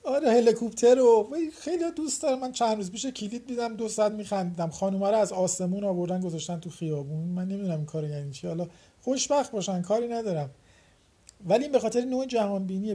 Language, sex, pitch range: Persian, male, 170-220 Hz